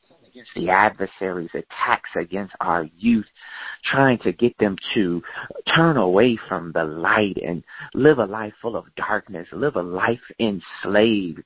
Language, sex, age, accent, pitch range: Japanese, male, 40-59, American, 95-125 Hz